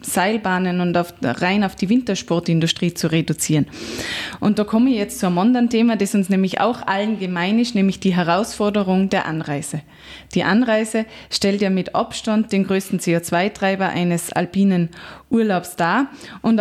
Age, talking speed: 20-39, 155 wpm